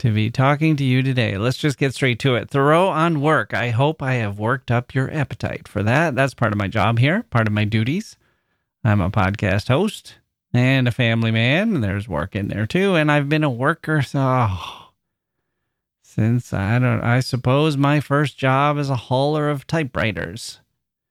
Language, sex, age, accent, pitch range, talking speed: English, male, 30-49, American, 115-145 Hz, 195 wpm